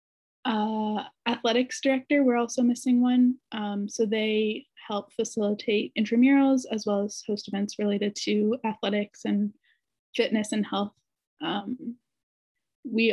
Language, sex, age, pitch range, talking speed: English, female, 20-39, 210-250 Hz, 125 wpm